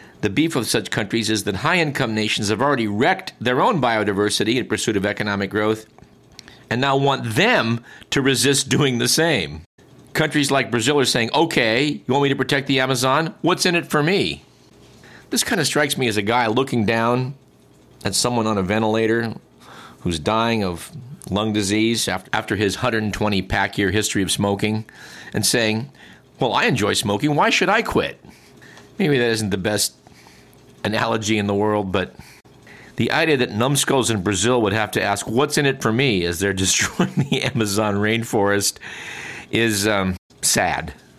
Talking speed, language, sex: 170 wpm, English, male